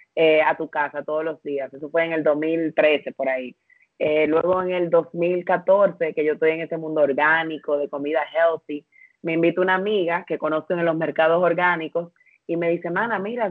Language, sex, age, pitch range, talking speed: Spanish, female, 30-49, 155-190 Hz, 195 wpm